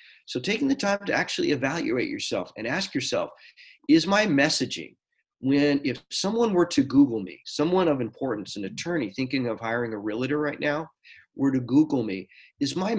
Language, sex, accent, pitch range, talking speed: English, male, American, 115-180 Hz, 180 wpm